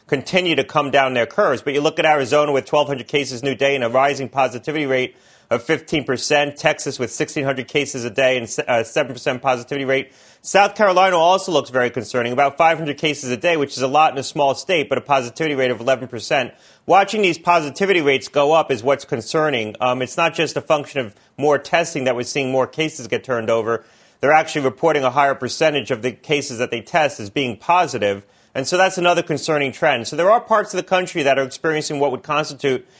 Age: 30-49